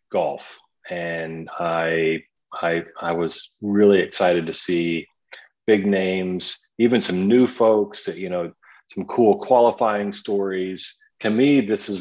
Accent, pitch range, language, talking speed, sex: American, 85-105 Hz, English, 135 wpm, male